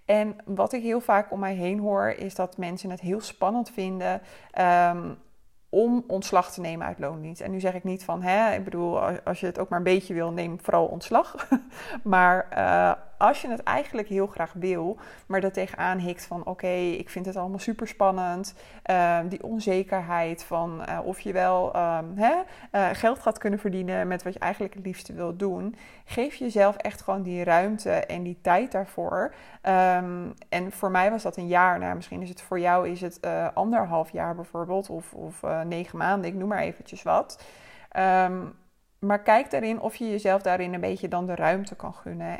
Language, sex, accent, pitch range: Dutch, female, Dutch, 175-210 Hz